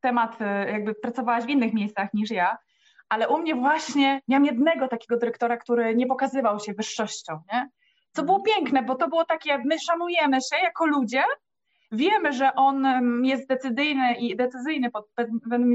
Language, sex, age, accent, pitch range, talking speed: Polish, female, 20-39, native, 230-280 Hz, 165 wpm